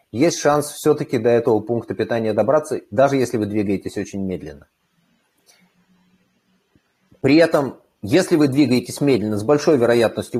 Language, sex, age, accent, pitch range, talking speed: Russian, male, 30-49, native, 115-175 Hz, 135 wpm